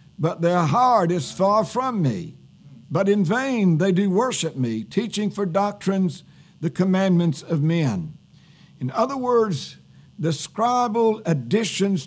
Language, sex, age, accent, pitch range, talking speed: English, male, 60-79, American, 155-210 Hz, 135 wpm